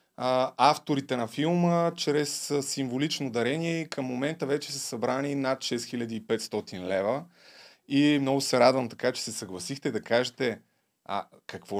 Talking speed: 130 wpm